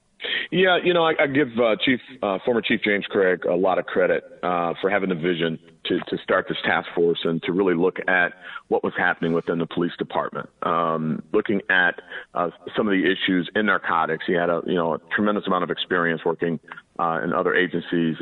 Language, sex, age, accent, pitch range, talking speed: English, male, 40-59, American, 80-95 Hz, 215 wpm